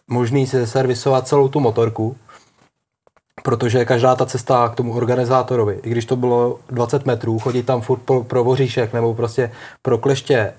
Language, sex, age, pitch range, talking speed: Czech, male, 20-39, 110-125 Hz, 170 wpm